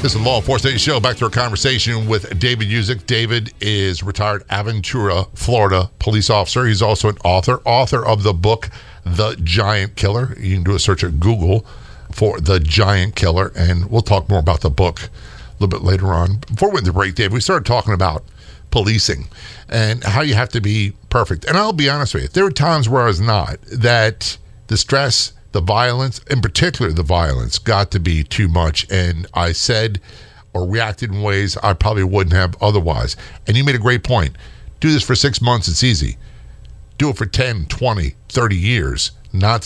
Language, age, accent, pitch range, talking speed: English, 50-69, American, 95-120 Hz, 200 wpm